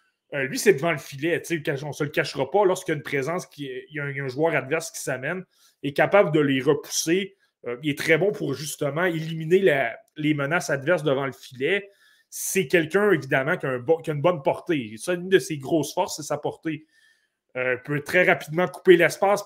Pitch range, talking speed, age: 155-205 Hz, 215 wpm, 30-49